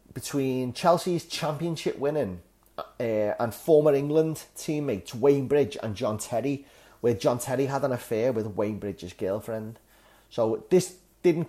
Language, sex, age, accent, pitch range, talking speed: English, male, 30-49, British, 110-150 Hz, 140 wpm